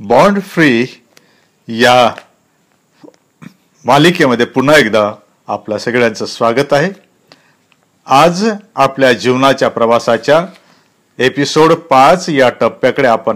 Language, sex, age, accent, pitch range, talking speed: Marathi, male, 50-69, native, 130-180 Hz, 75 wpm